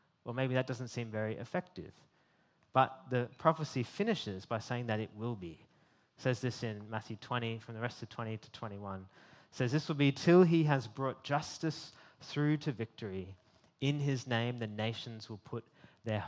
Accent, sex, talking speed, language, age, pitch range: Australian, male, 190 wpm, English, 20-39, 115-145 Hz